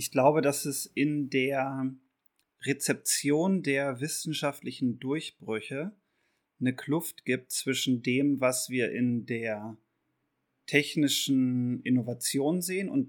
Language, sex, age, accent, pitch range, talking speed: German, male, 30-49, German, 120-140 Hz, 105 wpm